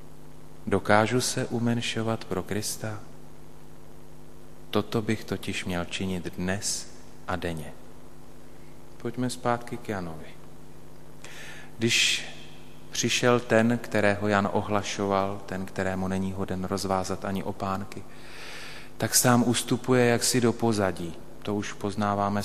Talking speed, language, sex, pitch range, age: 105 wpm, Slovak, male, 90-110 Hz, 30-49